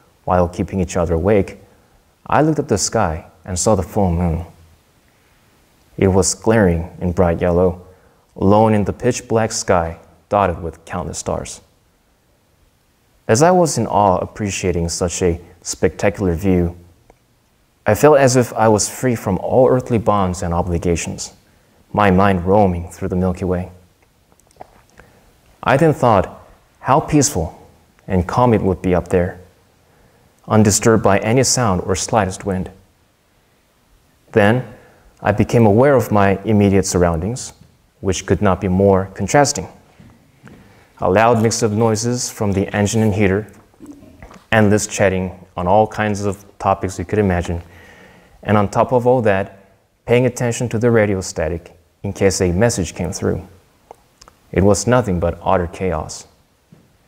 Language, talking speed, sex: English, 145 wpm, male